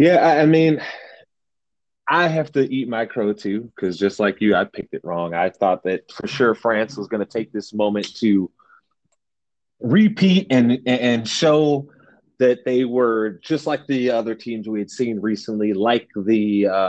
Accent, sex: American, male